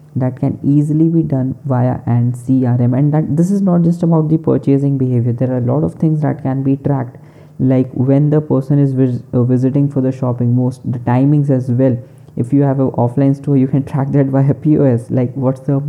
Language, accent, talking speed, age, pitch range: English, Indian, 220 wpm, 20-39, 125-145 Hz